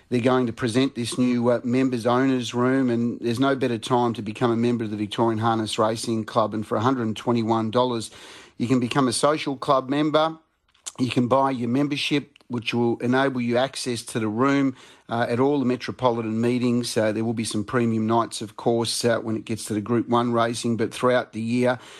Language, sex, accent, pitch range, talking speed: English, male, Australian, 115-130 Hz, 205 wpm